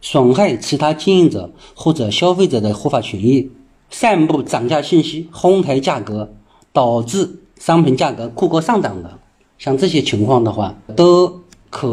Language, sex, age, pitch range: Chinese, male, 50-69, 115-175 Hz